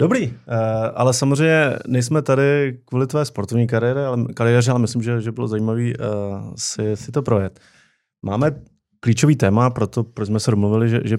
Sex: male